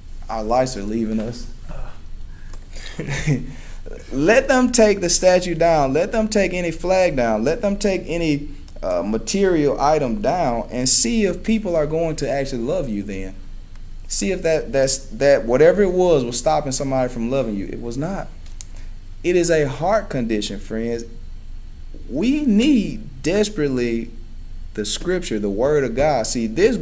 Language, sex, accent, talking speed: English, male, American, 155 wpm